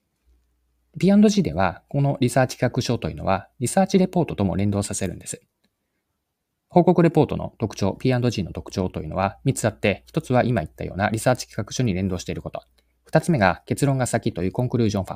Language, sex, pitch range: Japanese, male, 90-145 Hz